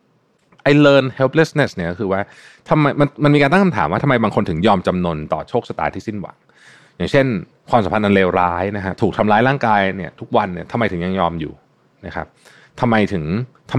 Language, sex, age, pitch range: Thai, male, 20-39, 90-135 Hz